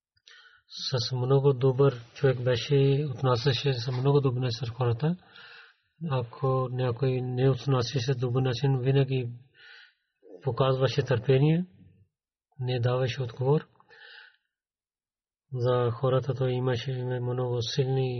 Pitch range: 125-140 Hz